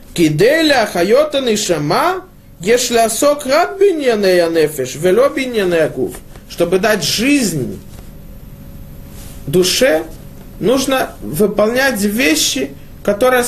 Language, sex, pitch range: Russian, male, 165-250 Hz